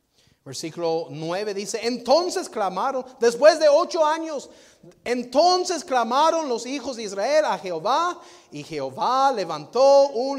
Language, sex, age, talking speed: Spanish, male, 30-49, 120 wpm